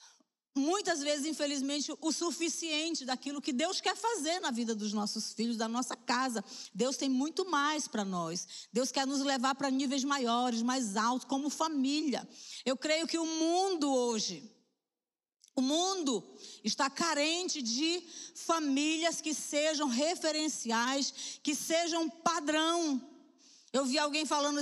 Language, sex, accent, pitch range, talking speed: Portuguese, female, Brazilian, 255-325 Hz, 140 wpm